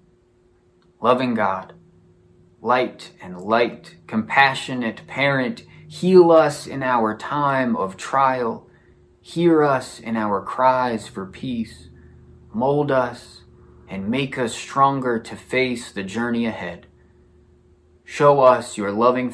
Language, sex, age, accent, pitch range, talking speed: English, male, 20-39, American, 90-120 Hz, 110 wpm